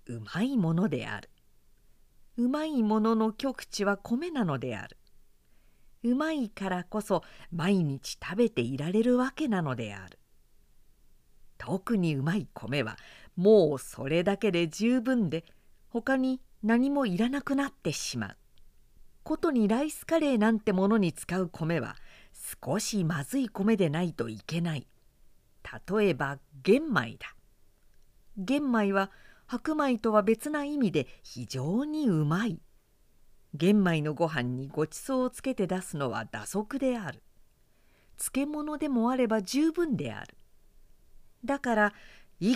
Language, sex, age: Japanese, female, 50-69